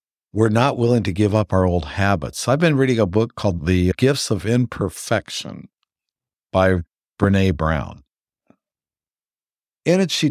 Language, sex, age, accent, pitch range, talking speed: English, male, 60-79, American, 95-120 Hz, 145 wpm